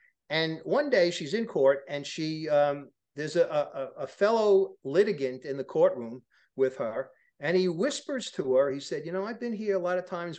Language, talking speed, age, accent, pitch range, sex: English, 210 wpm, 50-69, American, 145-230 Hz, male